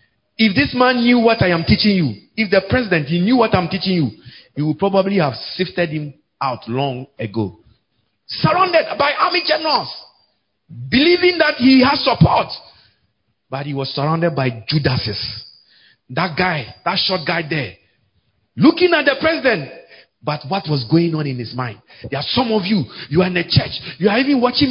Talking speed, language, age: 180 wpm, English, 50-69